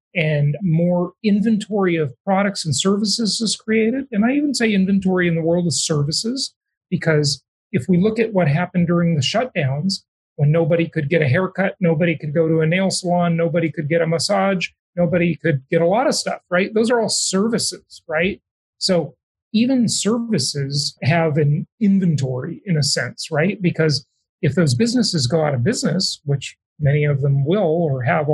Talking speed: 180 wpm